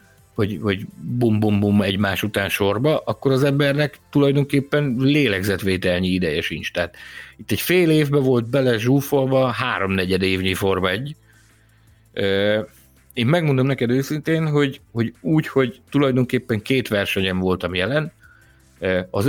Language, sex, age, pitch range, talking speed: Hungarian, male, 50-69, 100-140 Hz, 120 wpm